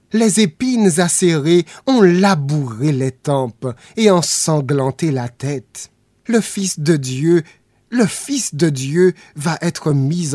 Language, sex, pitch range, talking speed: English, male, 120-170 Hz, 130 wpm